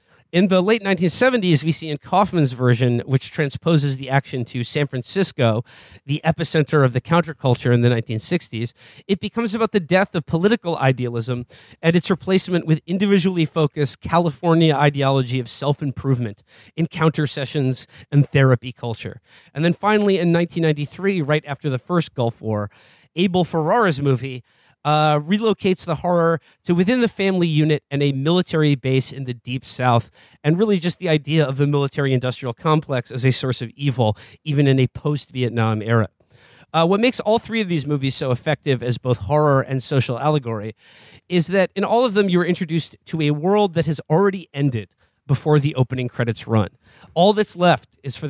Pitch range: 125-170 Hz